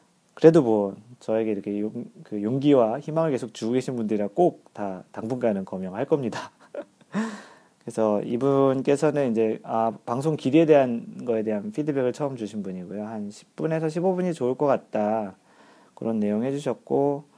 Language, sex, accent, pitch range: Korean, male, native, 105-150 Hz